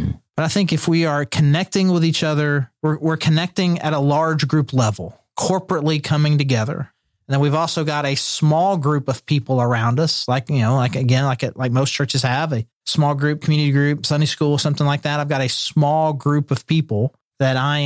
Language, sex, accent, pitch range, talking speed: English, male, American, 125-155 Hz, 210 wpm